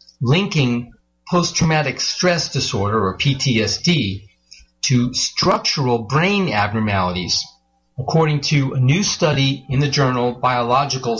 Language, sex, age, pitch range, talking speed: English, male, 40-59, 110-160 Hz, 100 wpm